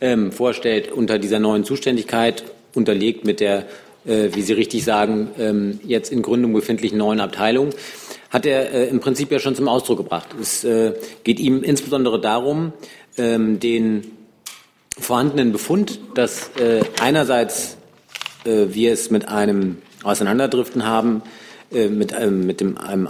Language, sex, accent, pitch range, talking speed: German, male, German, 105-125 Hz, 115 wpm